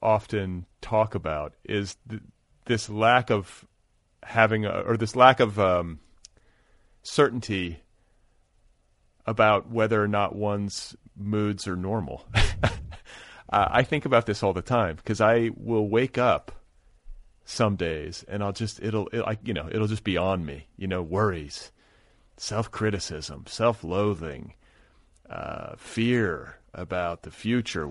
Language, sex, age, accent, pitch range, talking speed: English, male, 30-49, American, 90-110 Hz, 135 wpm